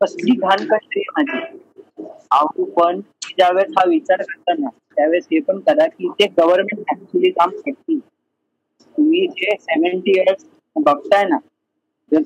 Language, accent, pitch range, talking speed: Marathi, native, 190-315 Hz, 80 wpm